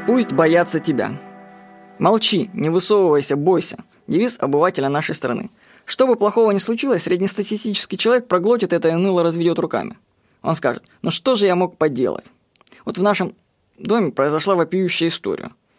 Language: Russian